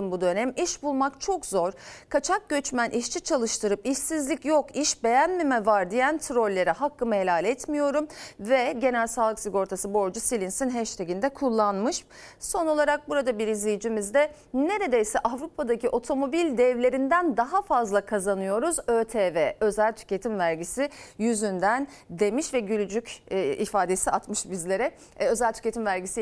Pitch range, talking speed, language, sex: 215-295 Hz, 125 wpm, Turkish, female